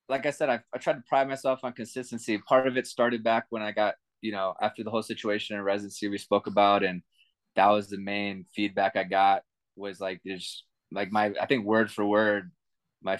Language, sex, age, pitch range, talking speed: English, male, 20-39, 100-110 Hz, 225 wpm